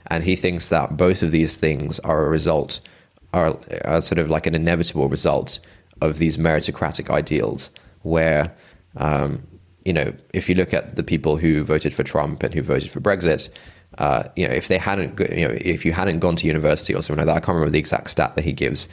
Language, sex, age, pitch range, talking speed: English, male, 20-39, 80-90 Hz, 220 wpm